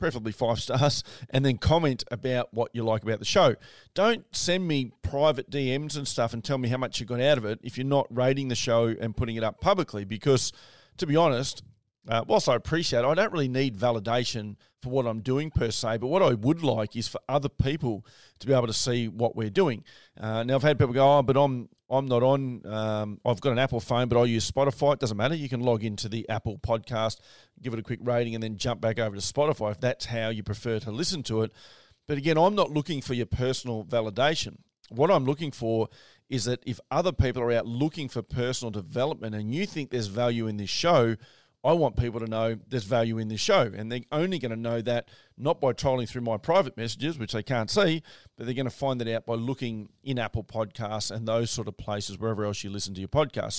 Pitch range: 110-135 Hz